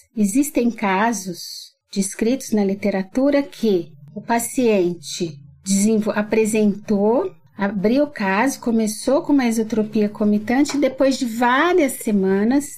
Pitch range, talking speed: 210-250 Hz, 105 wpm